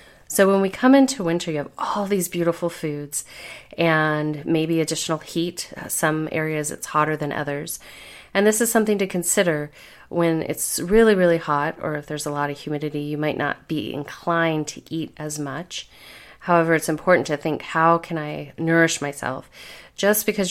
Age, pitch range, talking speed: 30-49, 145-165 Hz, 180 wpm